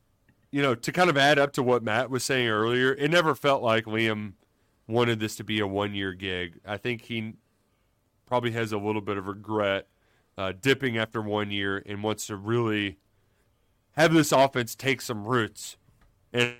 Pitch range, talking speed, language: 110-130 Hz, 185 wpm, English